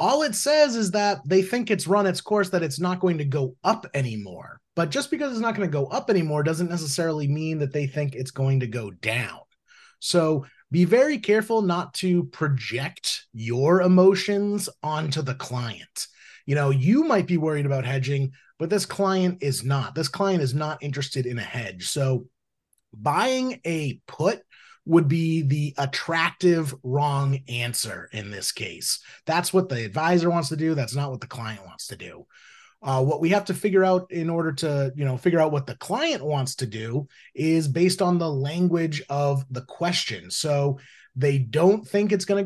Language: English